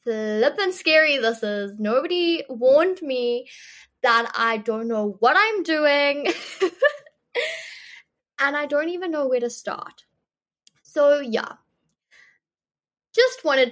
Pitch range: 215-290 Hz